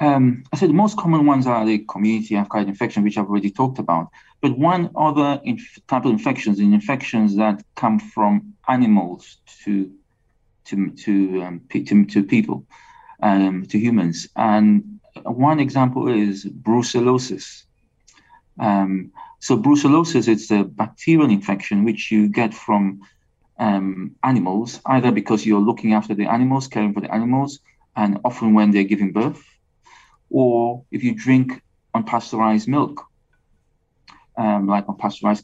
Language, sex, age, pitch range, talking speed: English, male, 40-59, 105-150 Hz, 145 wpm